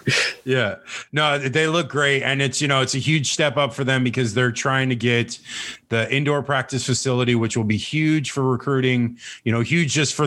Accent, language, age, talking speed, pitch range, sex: American, English, 20-39, 210 wpm, 115-135 Hz, male